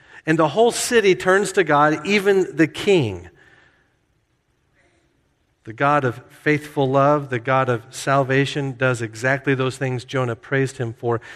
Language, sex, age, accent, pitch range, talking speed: English, male, 50-69, American, 120-150 Hz, 145 wpm